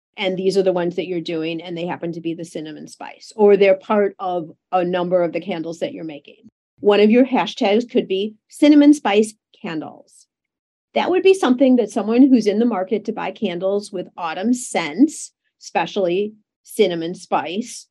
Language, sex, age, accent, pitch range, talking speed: English, female, 50-69, American, 190-255 Hz, 190 wpm